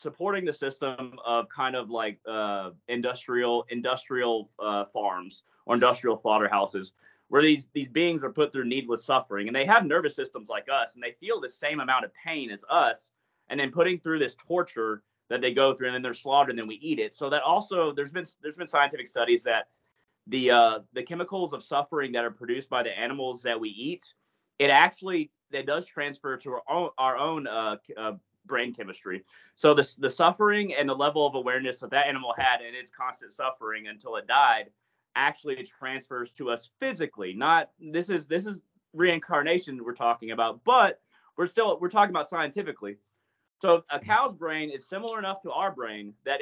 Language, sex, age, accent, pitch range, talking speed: English, male, 30-49, American, 120-175 Hz, 195 wpm